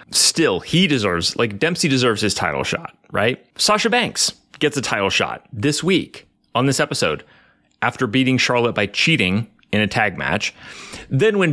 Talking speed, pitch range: 165 wpm, 110-150 Hz